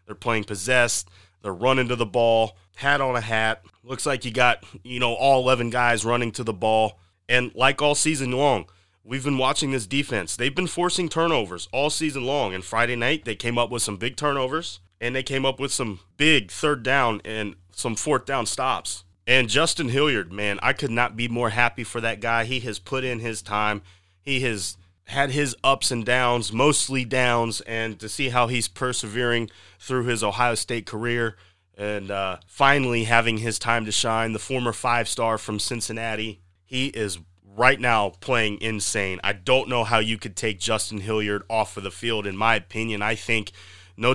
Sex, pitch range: male, 105-130 Hz